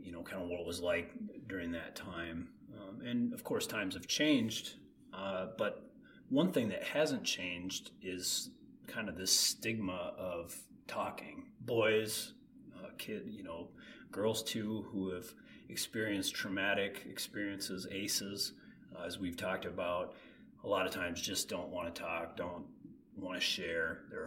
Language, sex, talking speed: English, male, 160 wpm